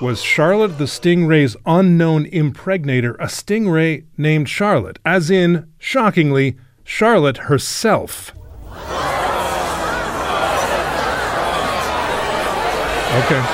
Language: English